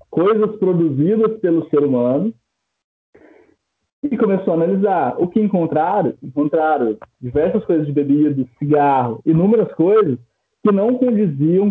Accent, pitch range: Brazilian, 150-210 Hz